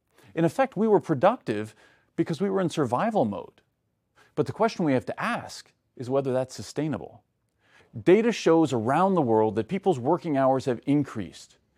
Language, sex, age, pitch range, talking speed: Arabic, male, 40-59, 130-190 Hz, 170 wpm